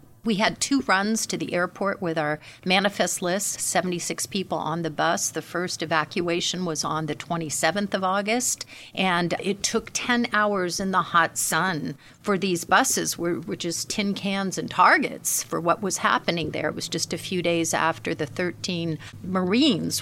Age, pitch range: 50-69, 160-200 Hz